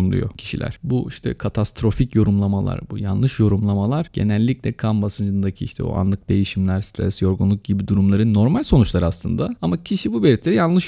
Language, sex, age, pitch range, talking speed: Turkish, male, 30-49, 100-130 Hz, 155 wpm